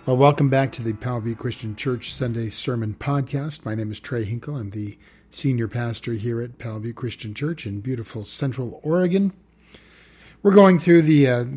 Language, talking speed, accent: English, 175 wpm, American